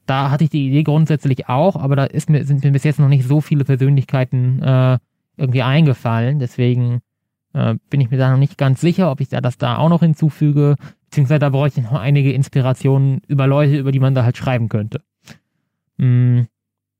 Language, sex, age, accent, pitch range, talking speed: German, male, 20-39, German, 130-155 Hz, 205 wpm